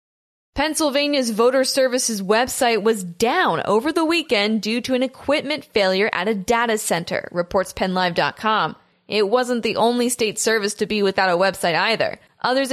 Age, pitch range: 10-29, 210-260 Hz